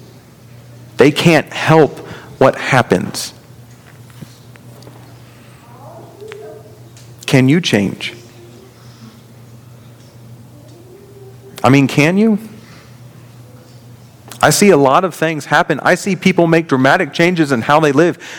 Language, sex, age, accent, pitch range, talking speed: English, male, 40-59, American, 120-160 Hz, 95 wpm